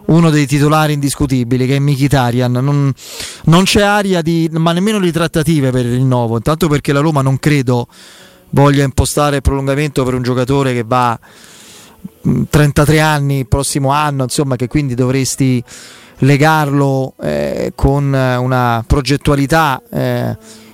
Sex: male